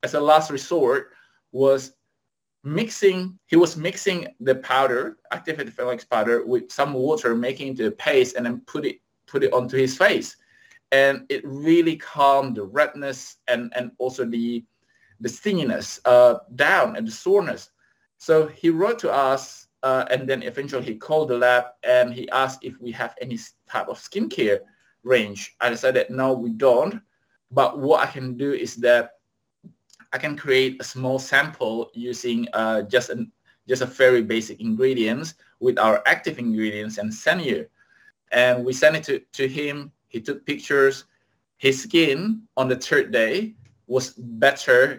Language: English